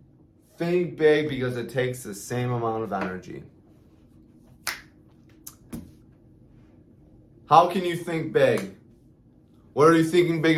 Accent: American